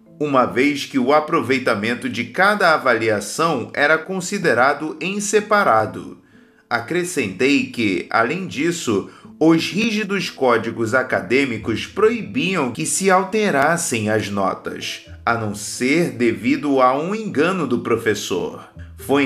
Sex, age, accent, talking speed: male, 30-49, Brazilian, 110 wpm